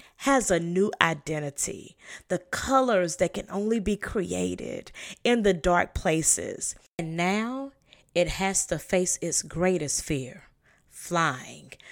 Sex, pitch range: female, 155-195 Hz